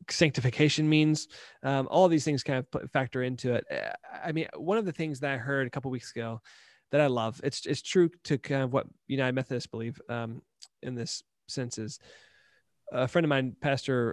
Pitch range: 130-160 Hz